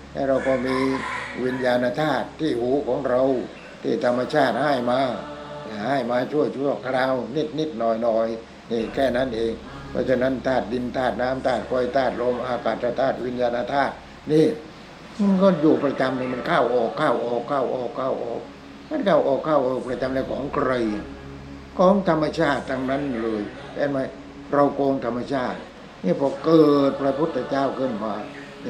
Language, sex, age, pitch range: English, male, 60-79, 120-140 Hz